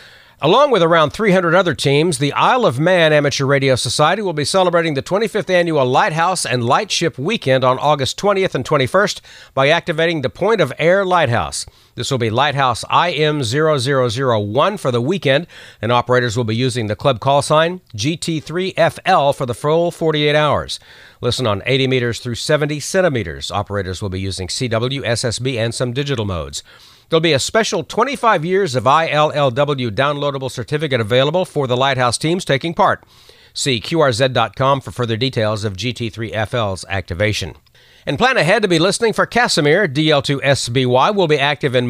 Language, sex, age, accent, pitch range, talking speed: English, male, 50-69, American, 115-160 Hz, 160 wpm